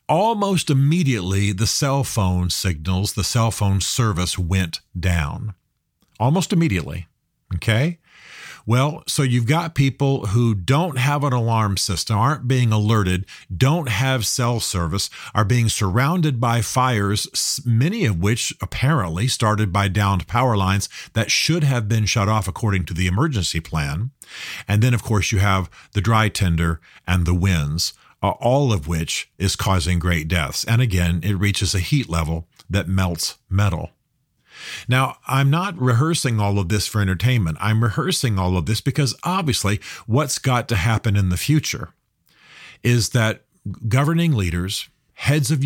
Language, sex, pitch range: English, male, 95-130 Hz